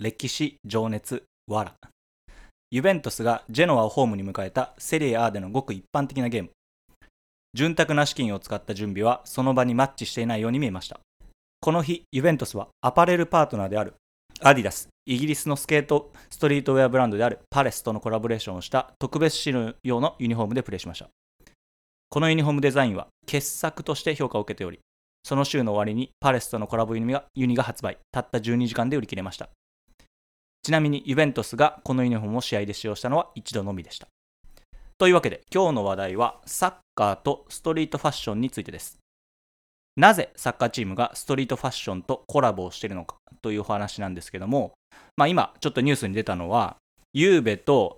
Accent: Japanese